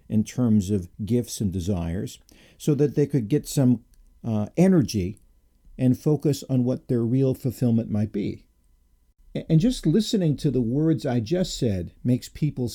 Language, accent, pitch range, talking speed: English, American, 100-135 Hz, 160 wpm